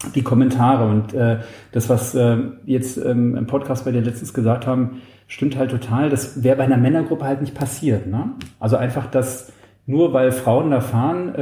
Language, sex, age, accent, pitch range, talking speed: German, male, 40-59, German, 115-135 Hz, 195 wpm